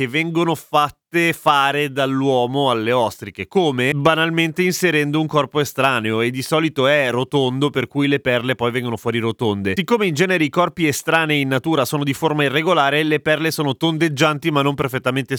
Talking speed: 175 wpm